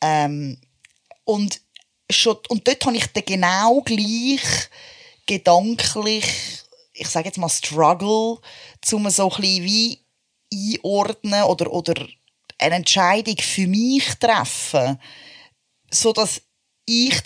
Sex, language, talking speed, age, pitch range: female, German, 110 wpm, 20-39, 160-220 Hz